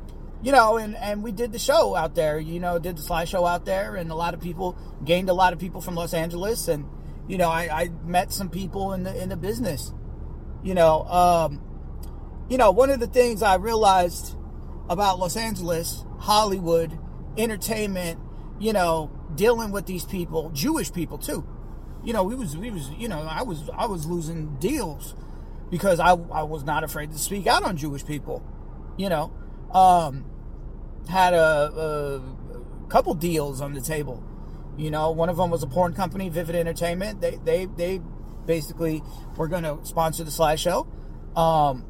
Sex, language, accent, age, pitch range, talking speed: male, English, American, 40-59, 155-195 Hz, 185 wpm